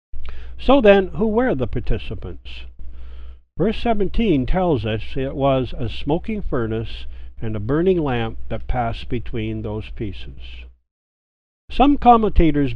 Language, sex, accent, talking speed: English, male, American, 120 wpm